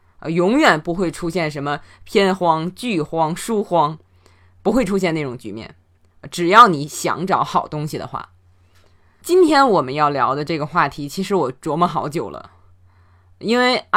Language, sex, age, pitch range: Chinese, female, 20-39, 135-200 Hz